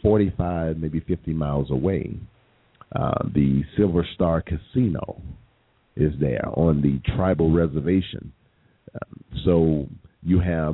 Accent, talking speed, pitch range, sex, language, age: American, 110 wpm, 80-95 Hz, male, English, 50-69